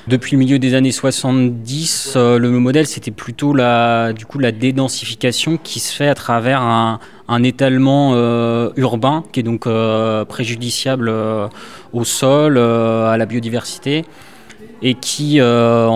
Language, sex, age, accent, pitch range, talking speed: French, male, 20-39, French, 115-135 Hz, 145 wpm